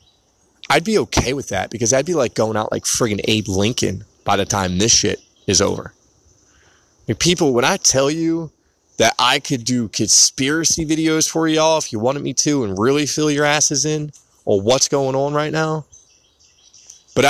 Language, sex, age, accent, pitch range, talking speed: English, male, 20-39, American, 110-140 Hz, 185 wpm